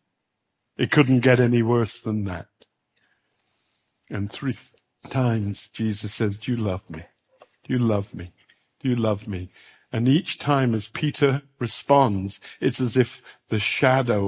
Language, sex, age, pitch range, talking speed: English, male, 60-79, 100-120 Hz, 145 wpm